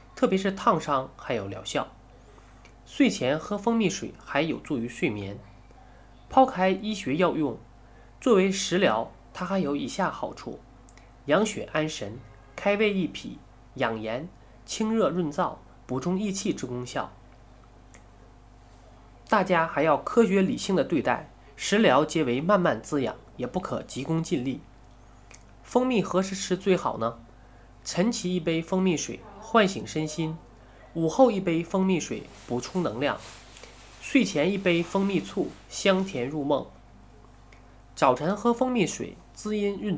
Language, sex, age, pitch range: Chinese, male, 20-39, 120-190 Hz